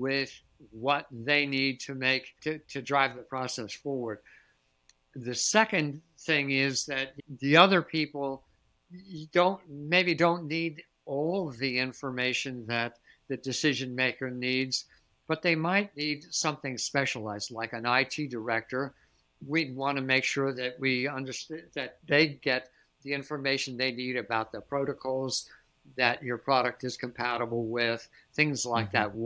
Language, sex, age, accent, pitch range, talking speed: English, male, 60-79, American, 125-150 Hz, 140 wpm